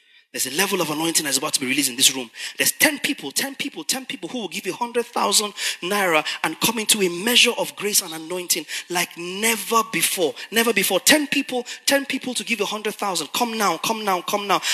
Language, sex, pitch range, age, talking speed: English, male, 195-275 Hz, 30-49, 220 wpm